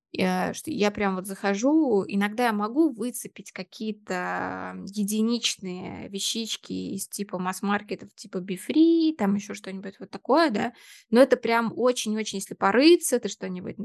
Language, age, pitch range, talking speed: Russian, 20-39, 190-230 Hz, 135 wpm